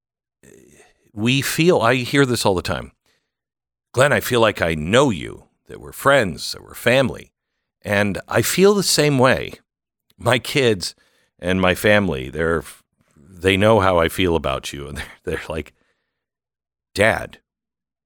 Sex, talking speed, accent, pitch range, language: male, 150 wpm, American, 80-105 Hz, English